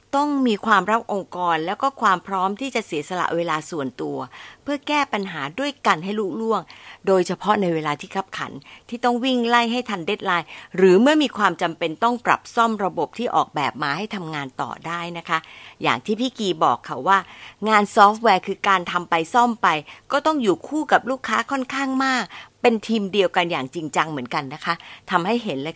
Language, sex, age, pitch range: Thai, female, 60-79, 170-235 Hz